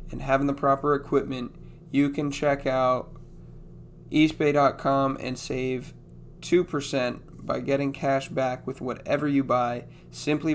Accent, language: American, English